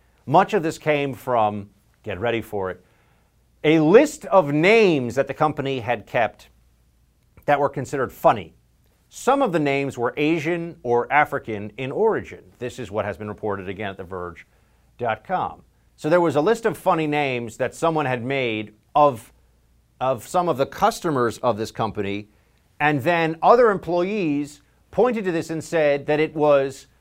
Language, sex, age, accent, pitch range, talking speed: English, male, 50-69, American, 130-195 Hz, 165 wpm